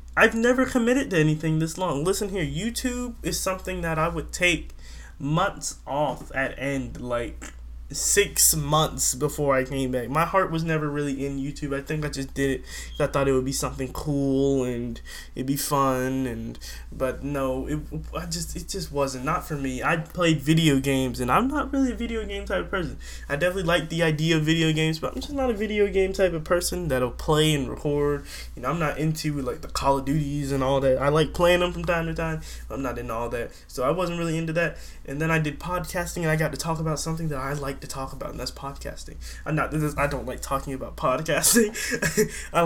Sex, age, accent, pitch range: male, 20-39, American, 135-165 Hz